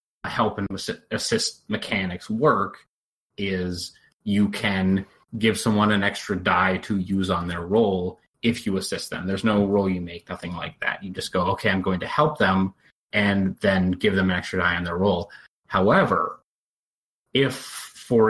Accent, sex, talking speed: American, male, 170 wpm